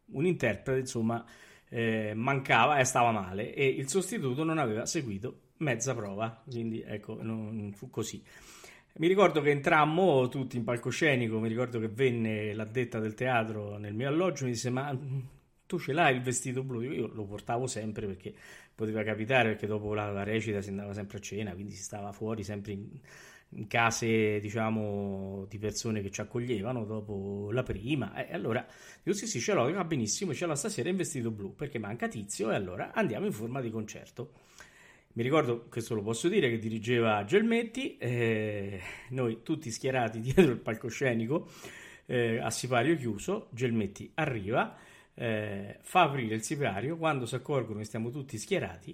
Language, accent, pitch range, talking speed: Italian, native, 105-130 Hz, 175 wpm